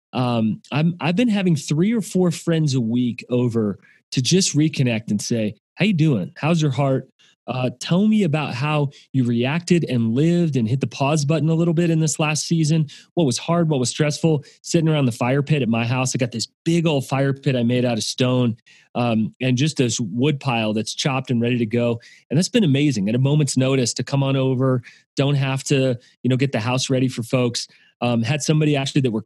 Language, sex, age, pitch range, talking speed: English, male, 30-49, 120-155 Hz, 230 wpm